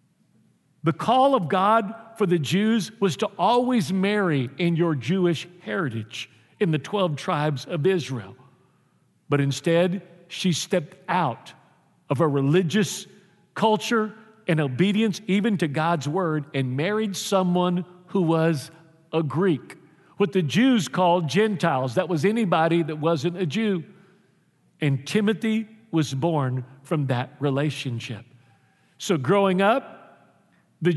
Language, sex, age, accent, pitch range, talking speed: English, male, 50-69, American, 150-200 Hz, 130 wpm